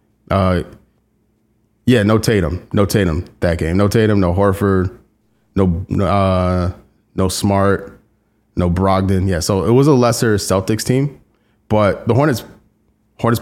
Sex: male